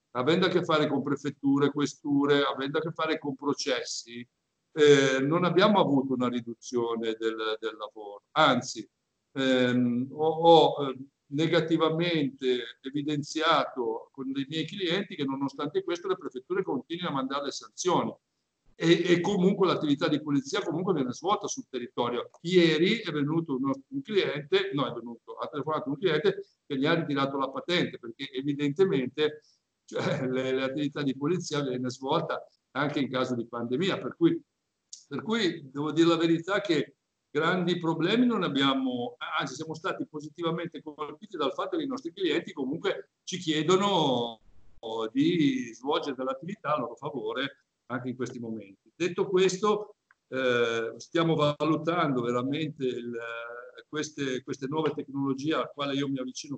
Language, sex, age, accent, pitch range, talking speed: Italian, male, 50-69, native, 130-170 Hz, 145 wpm